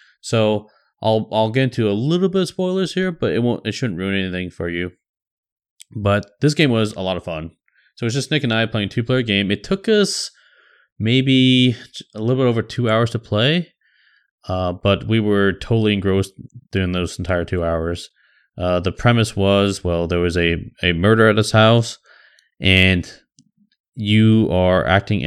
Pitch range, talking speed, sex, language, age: 90-115 Hz, 185 wpm, male, English, 20-39